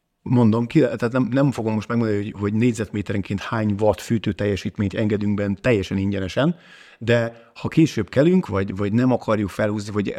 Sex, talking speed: male, 165 wpm